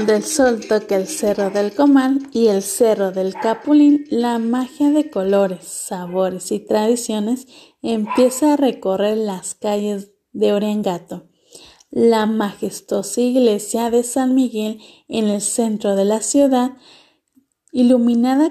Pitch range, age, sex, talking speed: 200-255 Hz, 30-49, female, 130 wpm